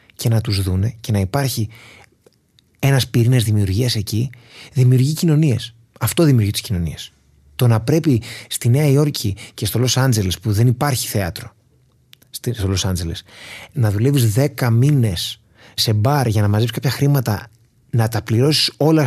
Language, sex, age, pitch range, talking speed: Greek, male, 30-49, 100-130 Hz, 155 wpm